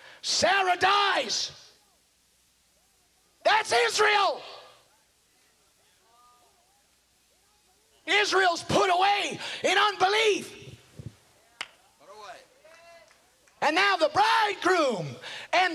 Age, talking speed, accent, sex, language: 50-69, 55 wpm, American, male, English